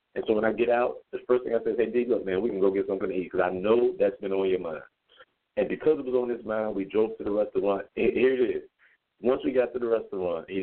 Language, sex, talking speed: English, male, 305 wpm